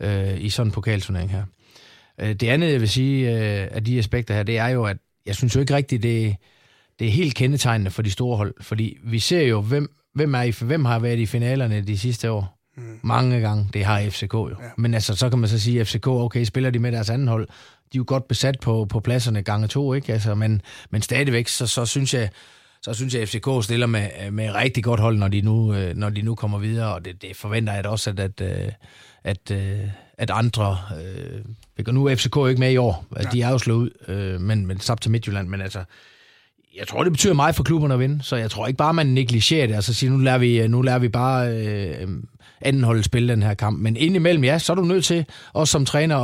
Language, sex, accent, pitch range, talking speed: Danish, male, native, 105-130 Hz, 235 wpm